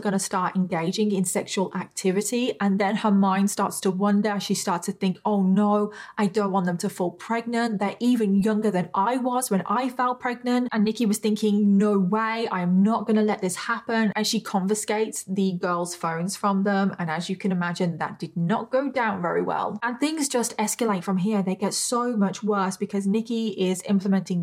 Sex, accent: female, British